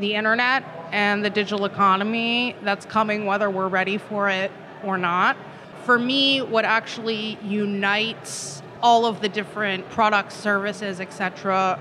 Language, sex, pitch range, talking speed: English, female, 195-225 Hz, 140 wpm